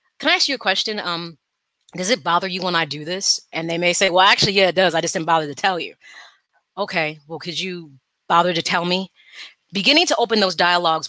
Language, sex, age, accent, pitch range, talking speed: English, female, 30-49, American, 165-210 Hz, 240 wpm